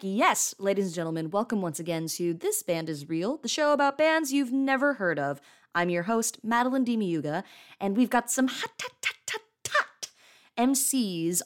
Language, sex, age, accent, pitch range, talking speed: English, female, 20-39, American, 155-255 Hz, 185 wpm